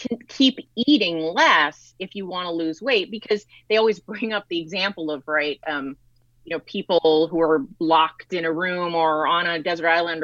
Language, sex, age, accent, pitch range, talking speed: English, female, 30-49, American, 155-220 Hz, 195 wpm